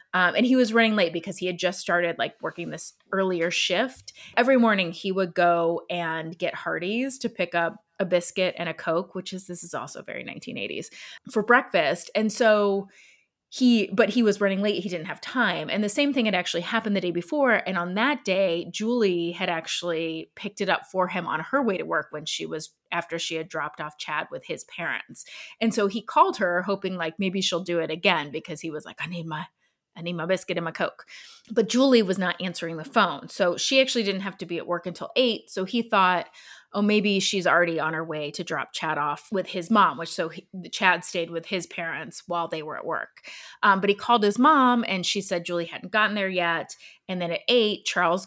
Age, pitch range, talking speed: 20-39, 170-210 Hz, 230 wpm